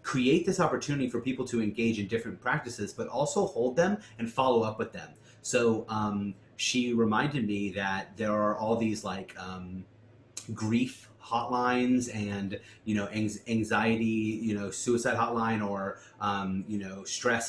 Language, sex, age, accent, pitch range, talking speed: English, male, 30-49, American, 105-120 Hz, 160 wpm